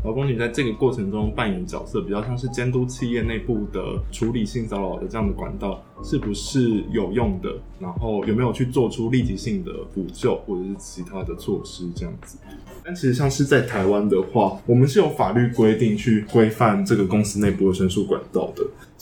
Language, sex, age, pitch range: Chinese, male, 20-39, 100-125 Hz